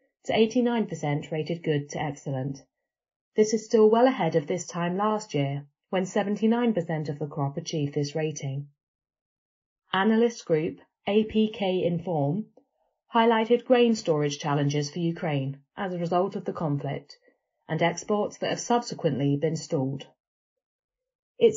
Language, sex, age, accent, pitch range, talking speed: English, female, 30-49, British, 150-215 Hz, 135 wpm